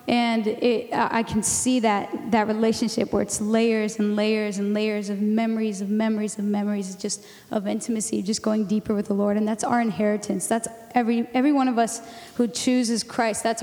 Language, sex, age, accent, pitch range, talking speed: English, female, 10-29, American, 215-250 Hz, 195 wpm